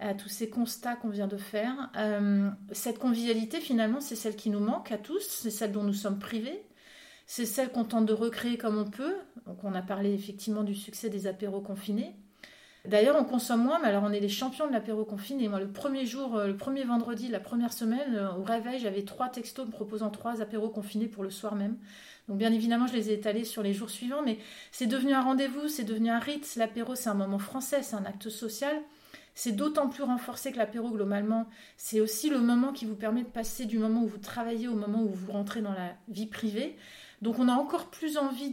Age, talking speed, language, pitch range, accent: 30-49, 225 wpm, French, 210-245 Hz, French